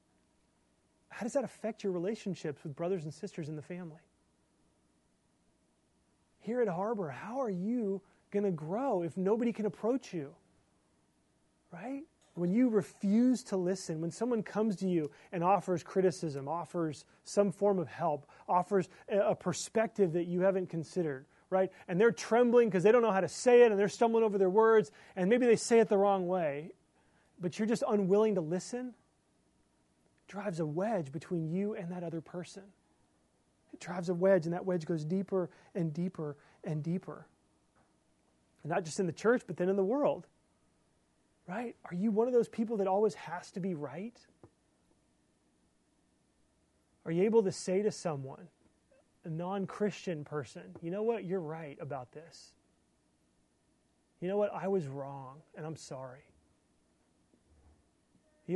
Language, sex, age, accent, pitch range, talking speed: English, male, 30-49, American, 155-205 Hz, 160 wpm